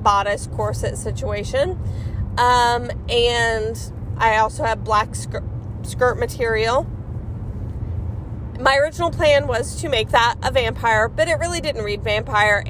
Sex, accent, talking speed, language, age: female, American, 130 wpm, English, 30-49